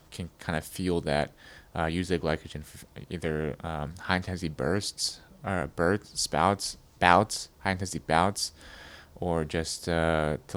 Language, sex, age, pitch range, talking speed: English, male, 20-39, 80-95 Hz, 150 wpm